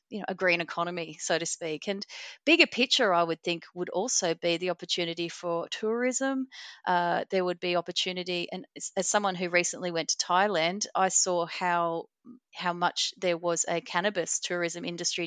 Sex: female